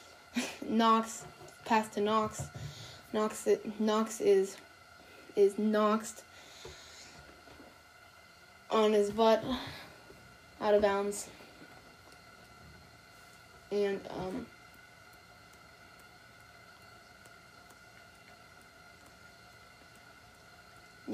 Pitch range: 205-240 Hz